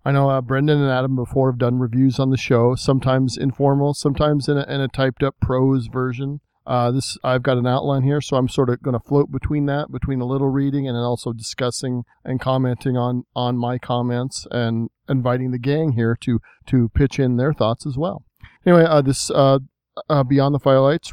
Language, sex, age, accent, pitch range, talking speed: English, male, 40-59, American, 125-145 Hz, 205 wpm